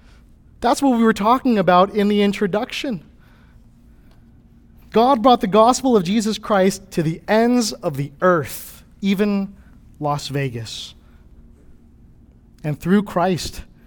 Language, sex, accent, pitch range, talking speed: English, male, American, 115-180 Hz, 120 wpm